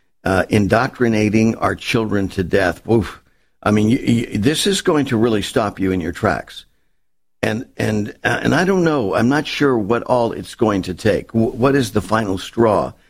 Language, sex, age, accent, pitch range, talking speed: English, male, 50-69, American, 105-130 Hz, 195 wpm